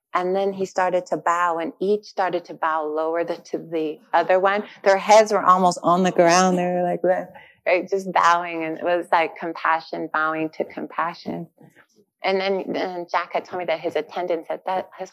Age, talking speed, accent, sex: 30-49, 205 wpm, American, female